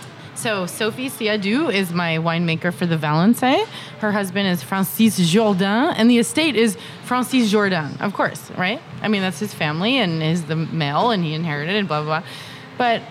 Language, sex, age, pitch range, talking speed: English, female, 20-39, 165-225 Hz, 185 wpm